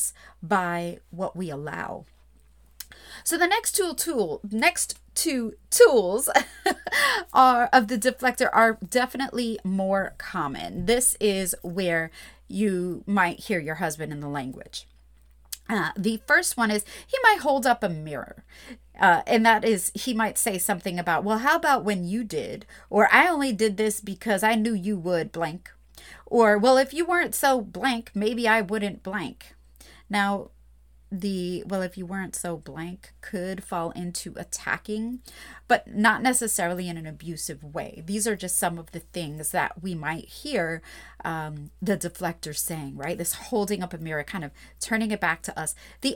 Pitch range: 175-245 Hz